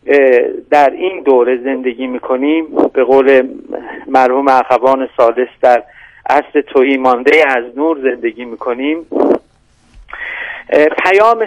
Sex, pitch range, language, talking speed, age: male, 135-175 Hz, Persian, 100 wpm, 50-69